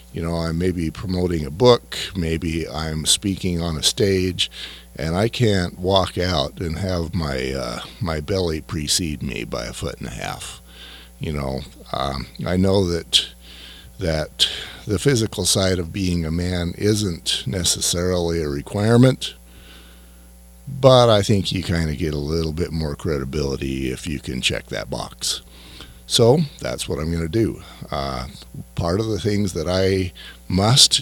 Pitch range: 65-95 Hz